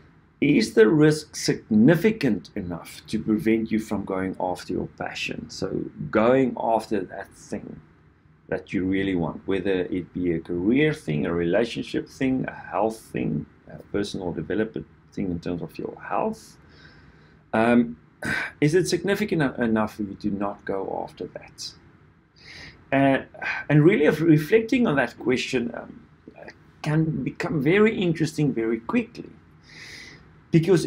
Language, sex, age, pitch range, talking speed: English, male, 50-69, 100-160 Hz, 135 wpm